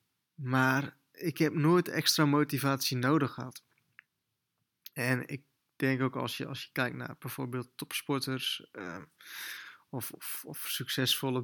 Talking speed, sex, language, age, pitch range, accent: 120 wpm, male, Dutch, 20-39, 130-155 Hz, Dutch